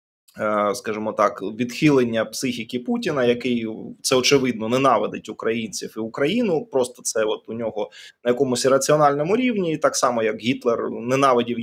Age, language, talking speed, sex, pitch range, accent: 20-39, Ukrainian, 135 wpm, male, 120-165 Hz, native